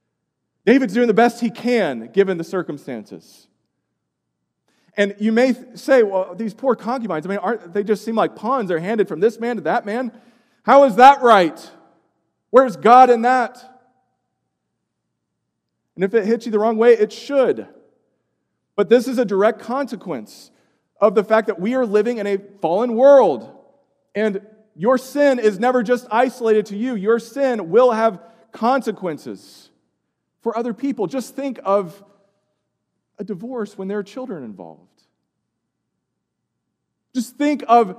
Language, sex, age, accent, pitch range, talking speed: English, male, 40-59, American, 210-255 Hz, 155 wpm